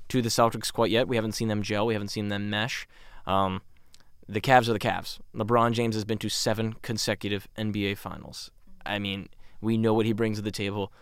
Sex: male